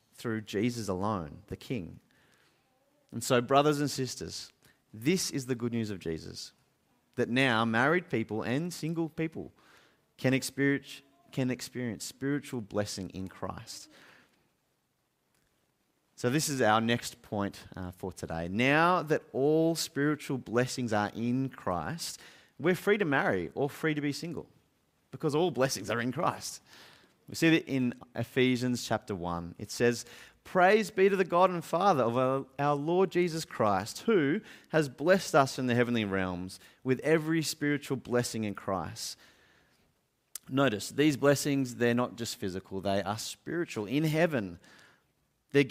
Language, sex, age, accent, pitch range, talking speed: English, male, 30-49, Australian, 110-145 Hz, 145 wpm